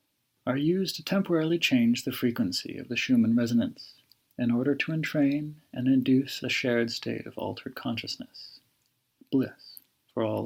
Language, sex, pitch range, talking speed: English, male, 120-155 Hz, 150 wpm